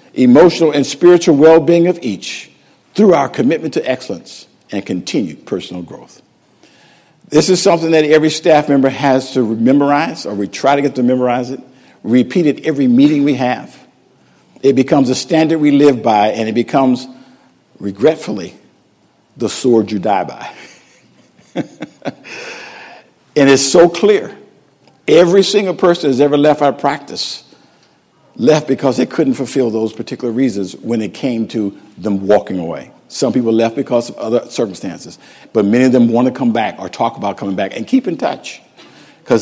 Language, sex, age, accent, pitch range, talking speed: English, male, 50-69, American, 115-155 Hz, 165 wpm